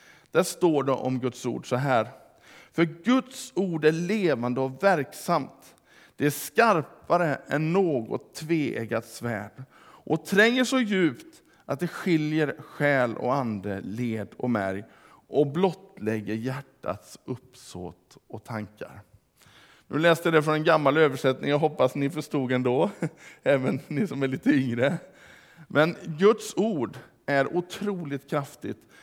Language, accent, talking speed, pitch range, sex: Swedish, Norwegian, 135 wpm, 130-175 Hz, male